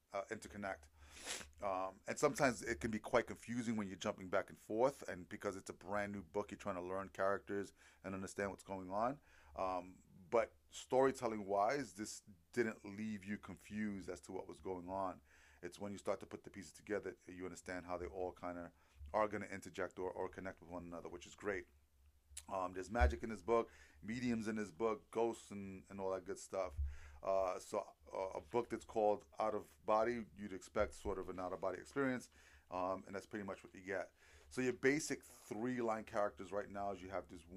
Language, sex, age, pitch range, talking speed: English, male, 30-49, 90-105 Hz, 205 wpm